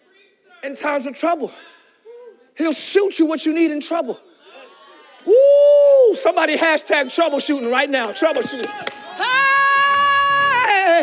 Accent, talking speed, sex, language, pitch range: American, 105 wpm, male, English, 305-380 Hz